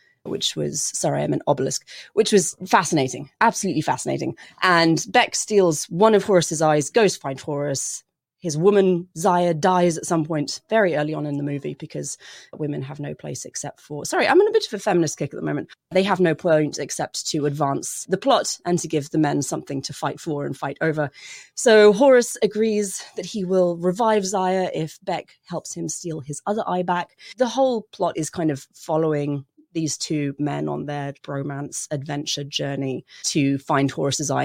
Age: 30-49